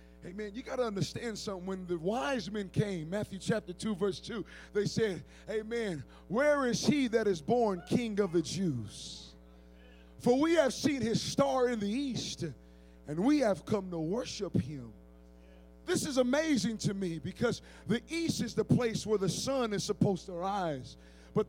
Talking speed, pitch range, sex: 180 wpm, 185-265 Hz, male